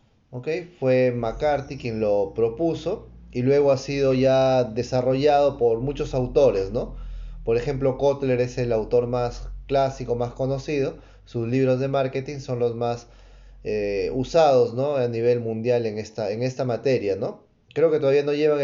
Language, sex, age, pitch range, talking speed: Spanish, male, 30-49, 115-145 Hz, 160 wpm